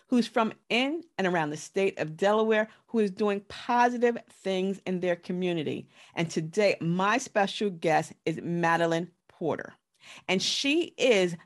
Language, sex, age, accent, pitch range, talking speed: English, female, 40-59, American, 175-230 Hz, 145 wpm